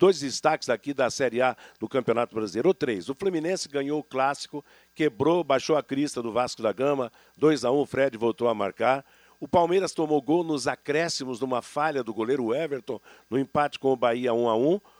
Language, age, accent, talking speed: Portuguese, 60-79, Brazilian, 210 wpm